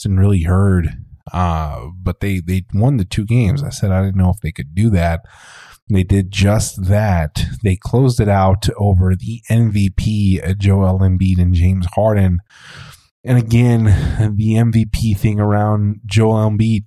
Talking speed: 165 wpm